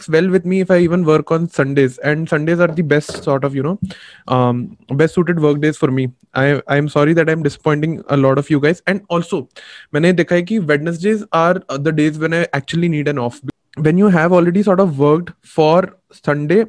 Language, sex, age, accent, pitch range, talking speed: English, male, 20-39, Indian, 145-180 Hz, 220 wpm